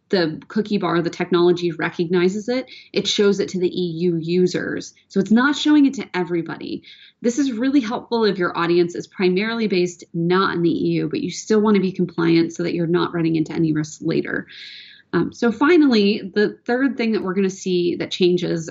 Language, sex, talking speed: English, female, 205 wpm